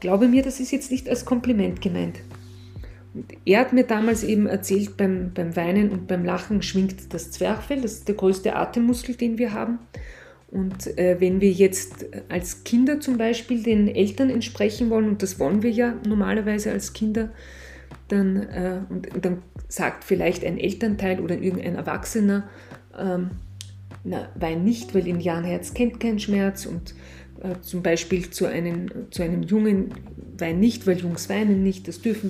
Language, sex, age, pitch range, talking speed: German, female, 30-49, 180-230 Hz, 170 wpm